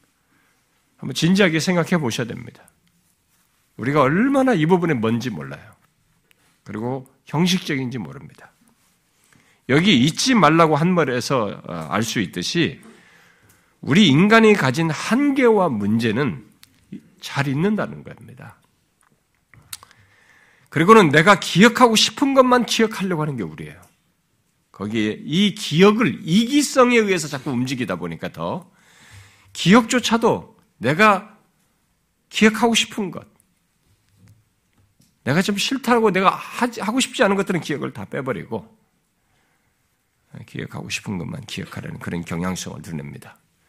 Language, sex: Korean, male